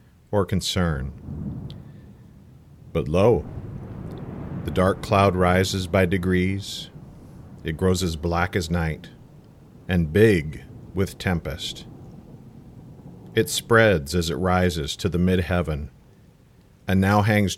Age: 50-69